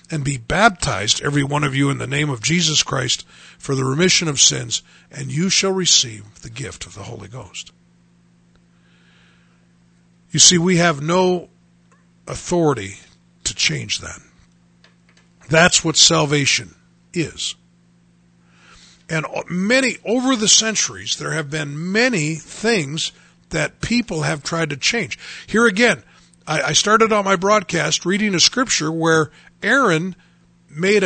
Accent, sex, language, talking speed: American, male, English, 135 wpm